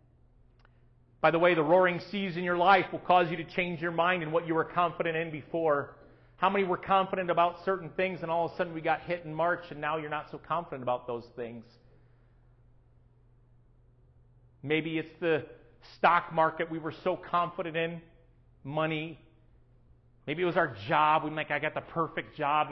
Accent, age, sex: American, 40-59, male